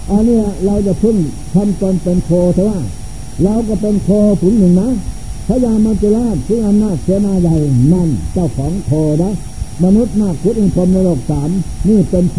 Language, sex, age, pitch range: Thai, male, 60-79, 155-200 Hz